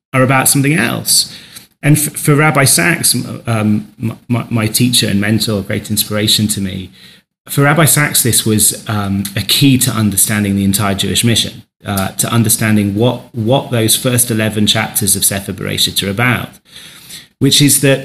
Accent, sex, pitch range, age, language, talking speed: British, male, 110-135 Hz, 30-49, English, 165 wpm